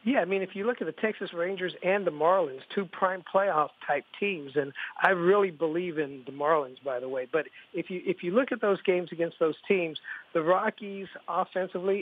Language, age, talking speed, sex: English, 50-69, 210 wpm, male